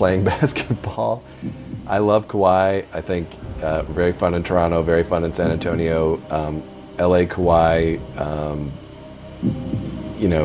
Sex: male